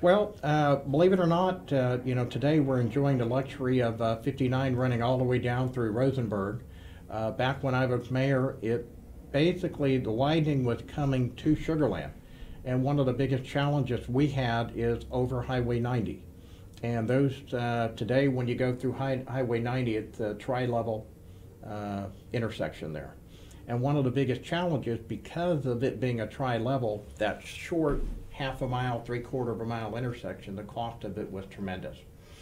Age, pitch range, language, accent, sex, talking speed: 60-79, 110-130 Hz, English, American, male, 180 wpm